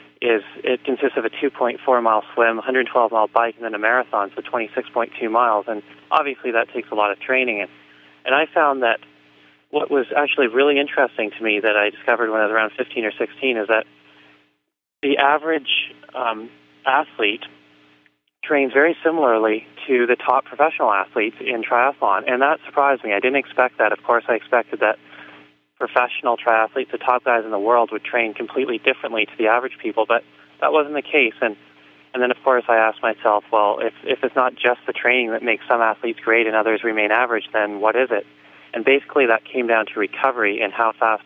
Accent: American